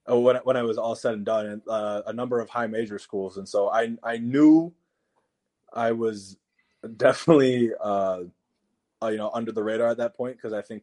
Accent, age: American, 20-39